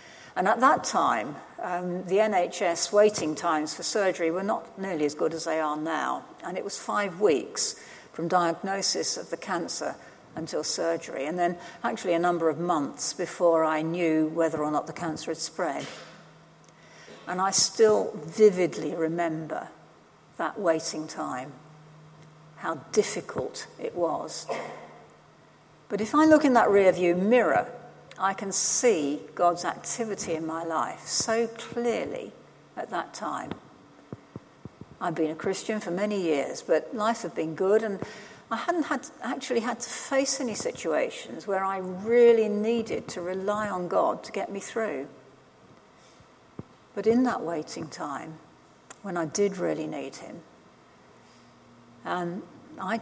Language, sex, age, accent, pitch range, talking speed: English, female, 60-79, British, 165-220 Hz, 145 wpm